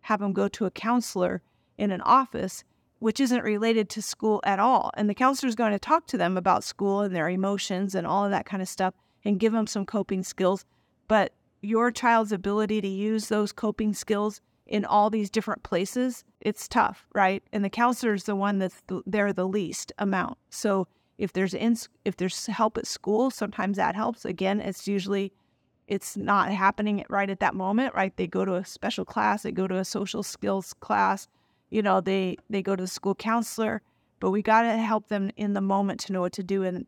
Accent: American